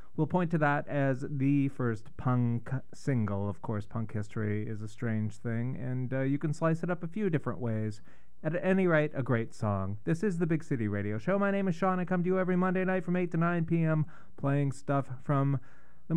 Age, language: 30-49, English